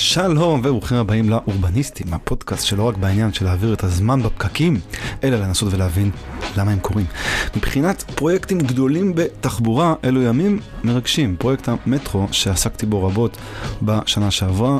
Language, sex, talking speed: Hebrew, male, 135 wpm